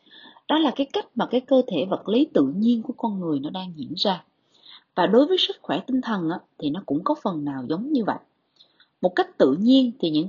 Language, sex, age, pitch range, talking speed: Vietnamese, female, 20-39, 195-285 Hz, 240 wpm